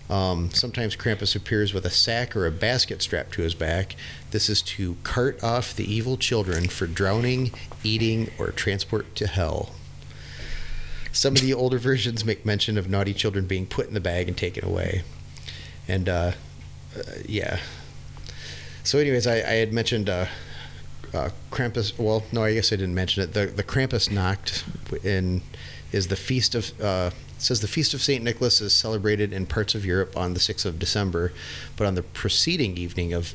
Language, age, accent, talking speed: English, 30-49, American, 180 wpm